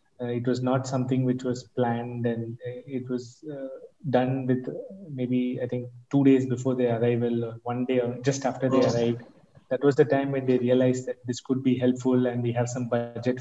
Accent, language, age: Indian, English, 20-39